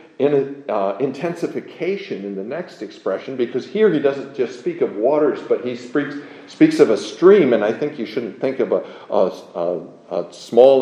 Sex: male